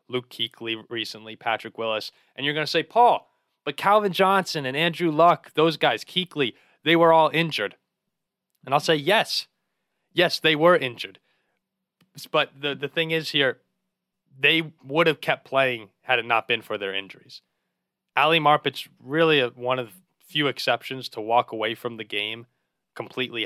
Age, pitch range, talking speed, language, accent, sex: 20-39, 125-160 Hz, 165 wpm, English, American, male